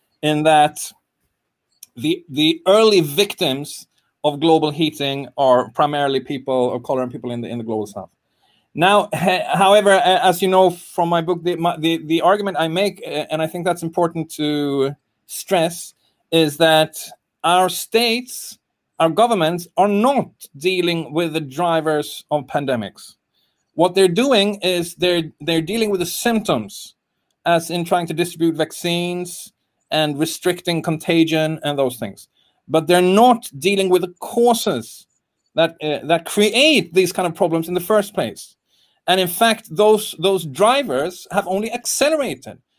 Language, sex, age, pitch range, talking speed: English, male, 30-49, 155-200 Hz, 155 wpm